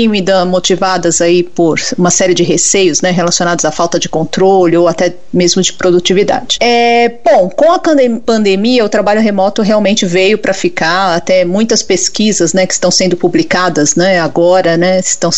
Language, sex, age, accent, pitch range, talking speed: Portuguese, female, 40-59, Brazilian, 185-240 Hz, 170 wpm